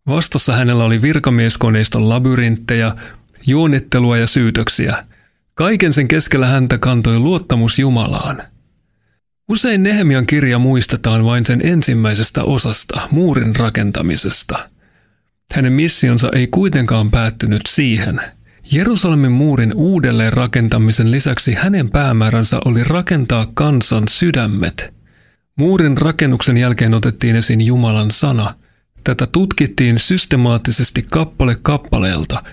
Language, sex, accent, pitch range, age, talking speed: Finnish, male, native, 115-145 Hz, 40-59, 100 wpm